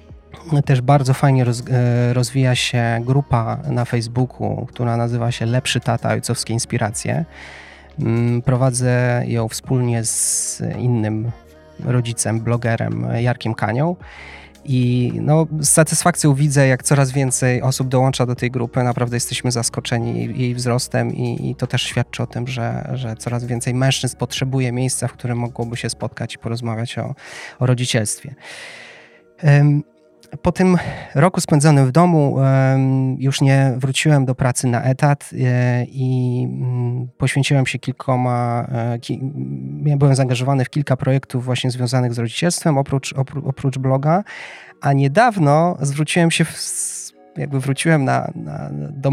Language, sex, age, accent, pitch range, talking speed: Polish, male, 20-39, native, 120-140 Hz, 130 wpm